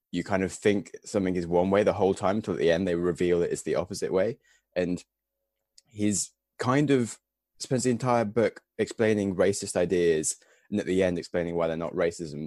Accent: British